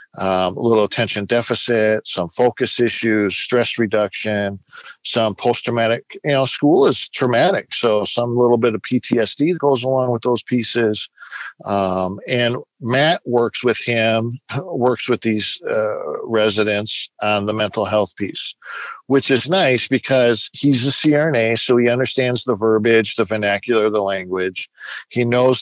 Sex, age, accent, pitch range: male, 50-69, American, 110-125 Hz